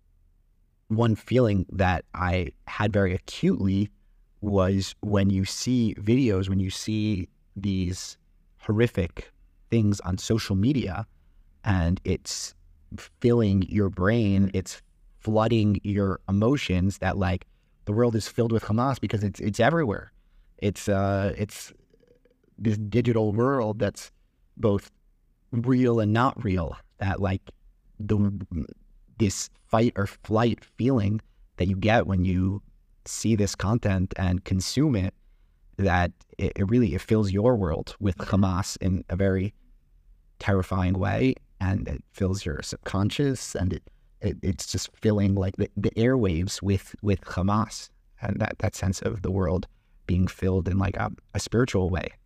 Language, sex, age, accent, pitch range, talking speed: English, male, 30-49, American, 95-110 Hz, 140 wpm